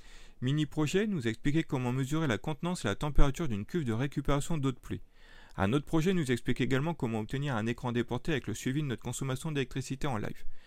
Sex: male